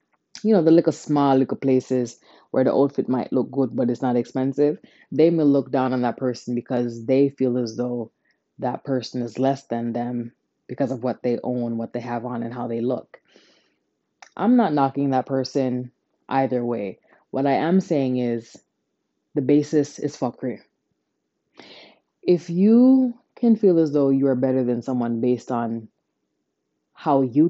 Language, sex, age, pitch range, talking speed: English, female, 20-39, 120-145 Hz, 170 wpm